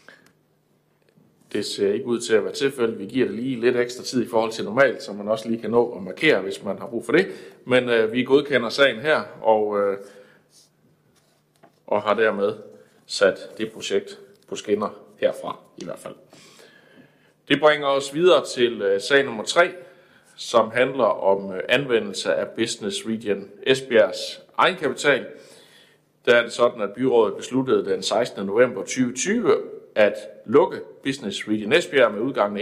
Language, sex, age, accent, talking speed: Danish, male, 60-79, native, 165 wpm